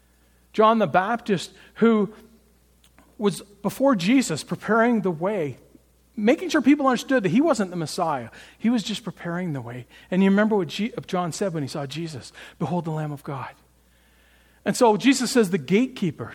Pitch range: 145-230 Hz